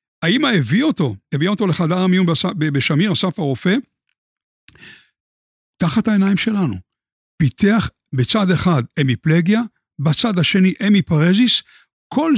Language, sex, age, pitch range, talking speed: Hebrew, male, 60-79, 155-210 Hz, 115 wpm